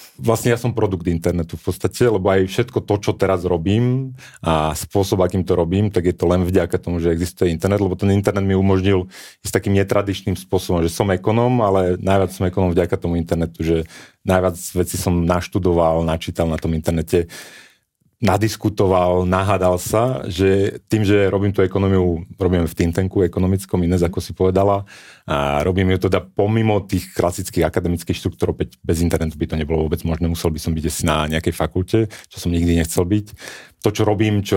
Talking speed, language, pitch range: 185 wpm, Slovak, 85-100 Hz